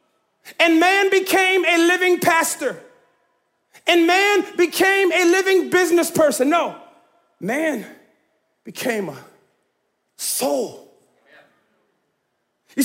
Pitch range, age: 240-355 Hz, 40-59